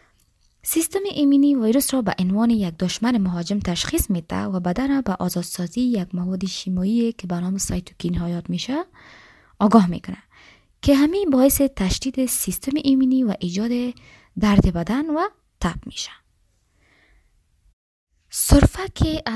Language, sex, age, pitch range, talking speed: Persian, female, 20-39, 190-265 Hz, 125 wpm